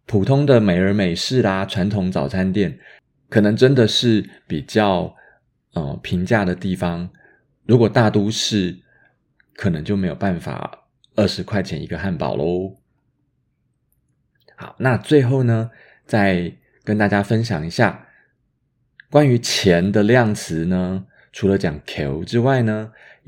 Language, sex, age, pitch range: Chinese, male, 30-49, 95-125 Hz